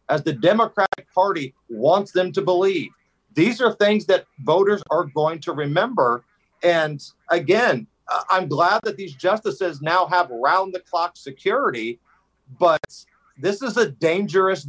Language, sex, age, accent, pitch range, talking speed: English, male, 40-59, American, 165-210 Hz, 140 wpm